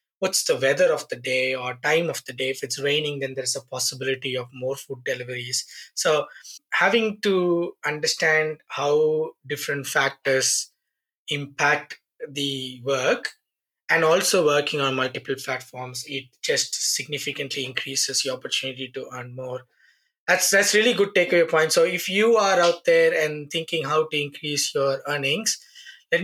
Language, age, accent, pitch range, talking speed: English, 20-39, Indian, 140-195 Hz, 155 wpm